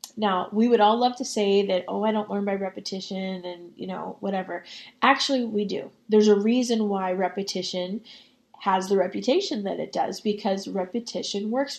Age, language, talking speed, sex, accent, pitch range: 20-39, English, 180 wpm, female, American, 195-235 Hz